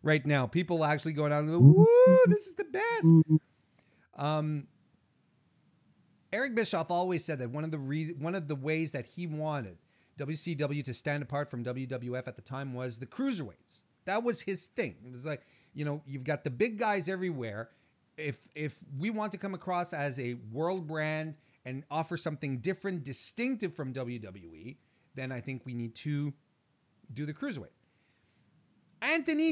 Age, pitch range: 30-49, 140-205 Hz